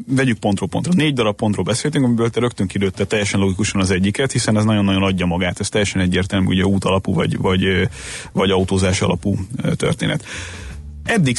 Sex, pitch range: male, 95-115 Hz